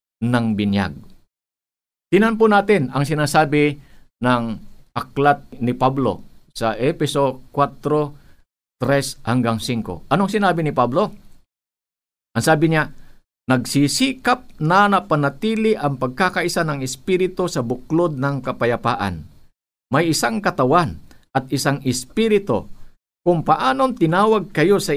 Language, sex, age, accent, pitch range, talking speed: Filipino, male, 50-69, native, 125-180 Hz, 105 wpm